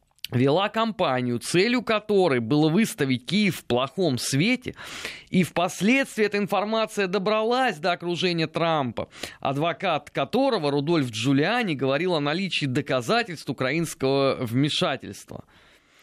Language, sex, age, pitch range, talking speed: Russian, male, 20-39, 135-200 Hz, 105 wpm